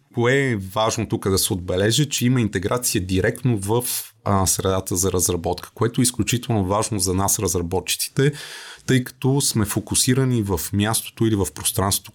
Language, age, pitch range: Bulgarian, 30-49, 95-120 Hz